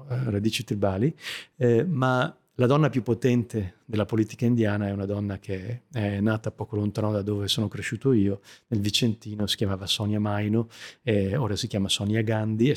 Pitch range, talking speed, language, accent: 100-120 Hz, 175 wpm, Italian, native